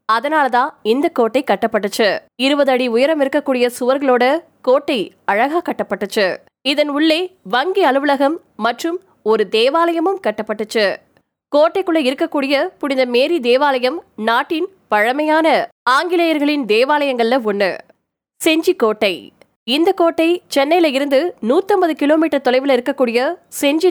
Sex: female